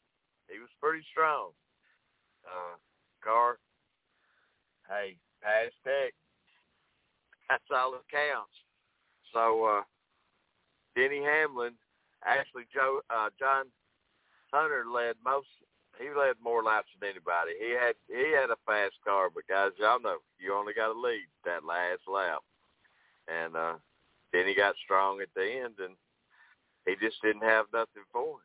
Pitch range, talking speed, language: 105-170 Hz, 140 wpm, English